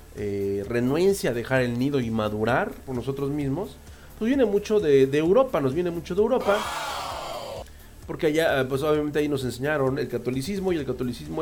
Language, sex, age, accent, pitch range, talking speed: English, male, 40-59, Mexican, 125-170 Hz, 180 wpm